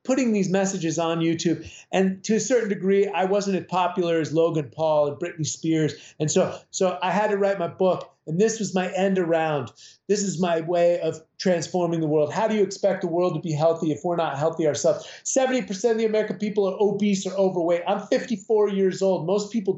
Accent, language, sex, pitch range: American, English, male, 170-210 Hz